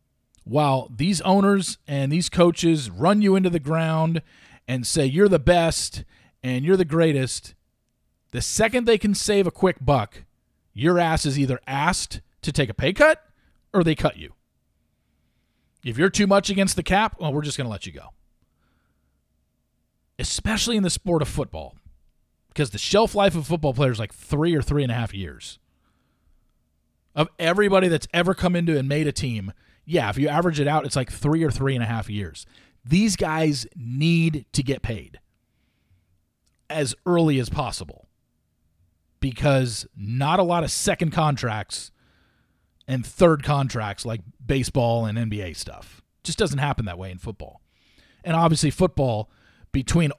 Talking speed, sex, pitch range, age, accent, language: 165 wpm, male, 105-165 Hz, 40-59, American, English